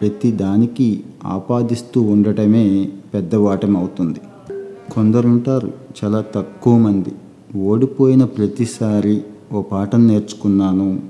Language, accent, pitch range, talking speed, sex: Telugu, native, 95-110 Hz, 85 wpm, male